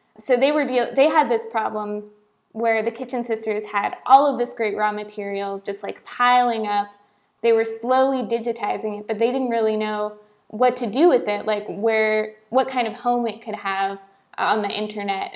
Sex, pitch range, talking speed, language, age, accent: female, 210-235 Hz, 195 wpm, English, 20-39, American